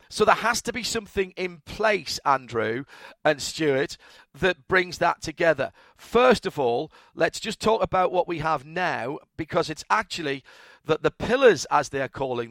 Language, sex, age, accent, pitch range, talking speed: English, male, 40-59, British, 145-195 Hz, 175 wpm